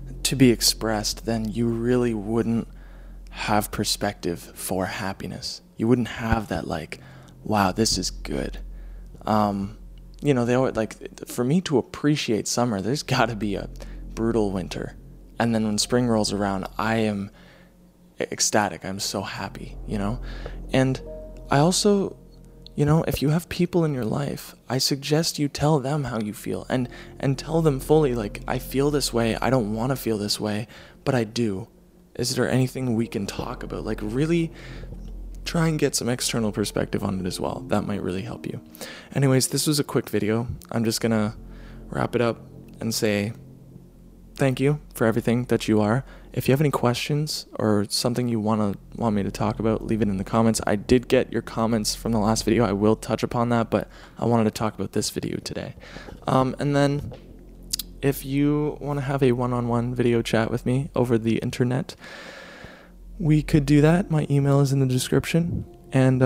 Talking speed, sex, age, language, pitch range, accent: 185 wpm, male, 20-39, English, 110-140 Hz, American